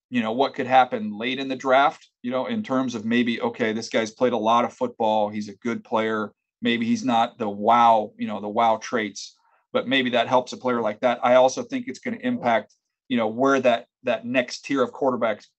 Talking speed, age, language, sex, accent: 235 wpm, 40-59, English, male, American